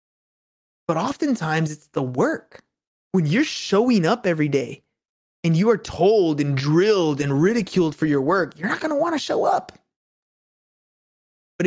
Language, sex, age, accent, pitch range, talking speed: English, male, 20-39, American, 170-240 Hz, 160 wpm